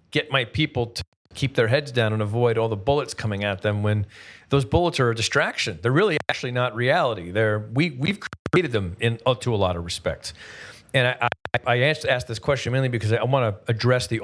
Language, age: English, 40-59